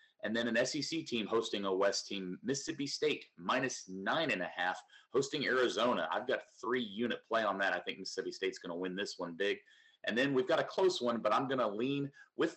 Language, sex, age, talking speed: English, male, 30-49, 220 wpm